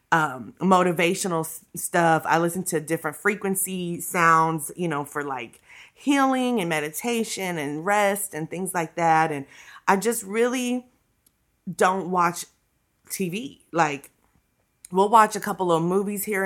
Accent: American